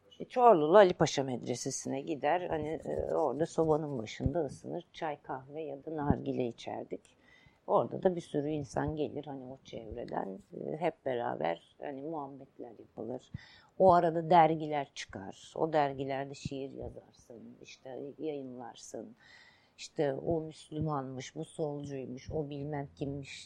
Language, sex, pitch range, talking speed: Turkish, female, 135-165 Hz, 130 wpm